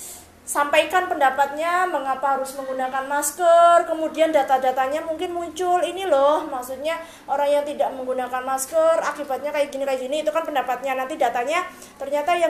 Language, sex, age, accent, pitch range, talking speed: Indonesian, female, 20-39, native, 255-330 Hz, 145 wpm